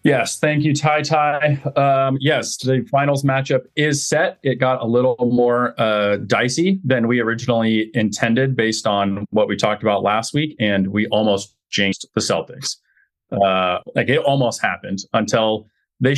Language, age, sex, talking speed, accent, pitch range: English, 30-49, male, 155 wpm, American, 110-140 Hz